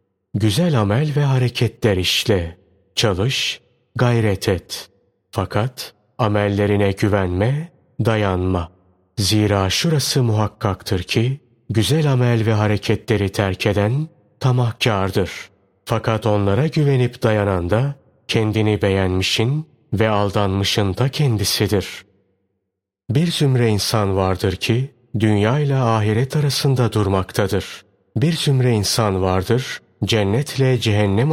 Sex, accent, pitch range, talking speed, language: male, native, 100-130 Hz, 95 wpm, Turkish